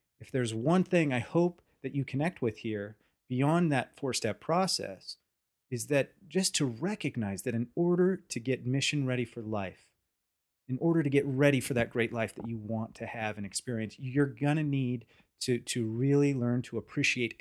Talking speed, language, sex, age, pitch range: 185 wpm, English, male, 30-49, 115-140 Hz